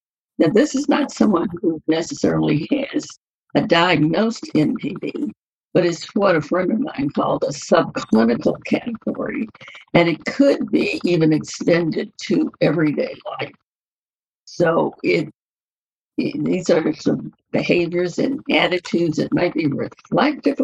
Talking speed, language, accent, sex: 130 wpm, English, American, female